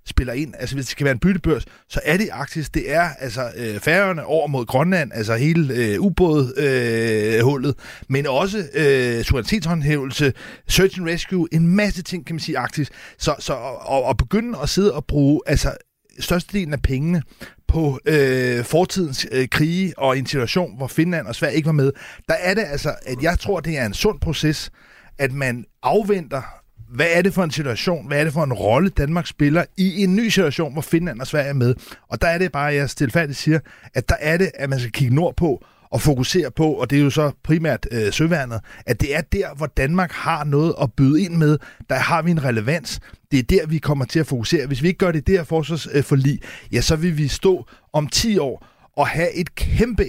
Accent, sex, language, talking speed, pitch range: native, male, Danish, 220 wpm, 135-170 Hz